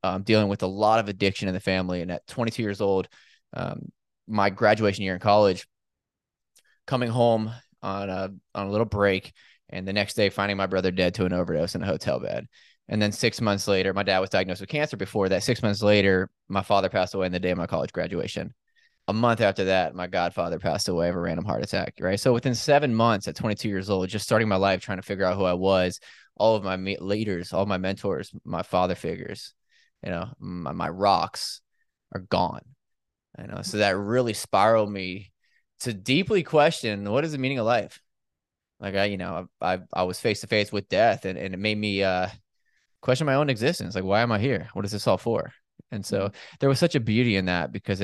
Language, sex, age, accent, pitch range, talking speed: English, male, 20-39, American, 95-115 Hz, 225 wpm